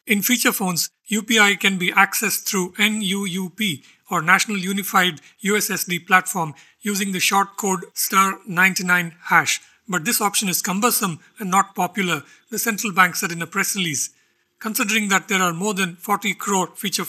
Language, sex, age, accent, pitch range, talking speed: English, male, 50-69, Indian, 180-205 Hz, 160 wpm